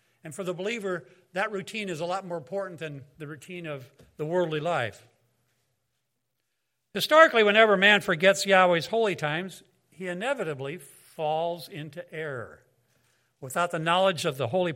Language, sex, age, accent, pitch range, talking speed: English, male, 60-79, American, 130-185 Hz, 145 wpm